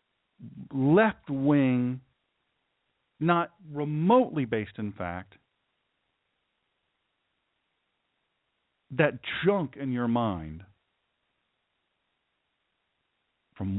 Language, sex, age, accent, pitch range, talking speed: English, male, 50-69, American, 100-135 Hz, 55 wpm